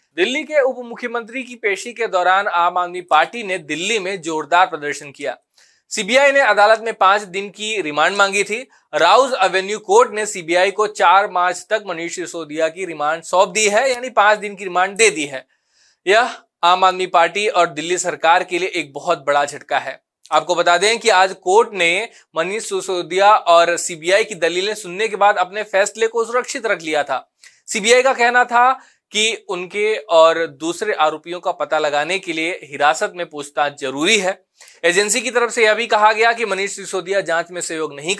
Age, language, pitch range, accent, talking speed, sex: 20-39, Hindi, 175-220 Hz, native, 190 wpm, male